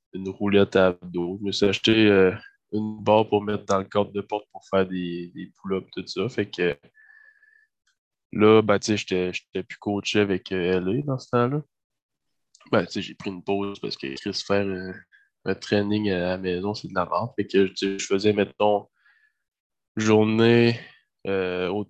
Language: French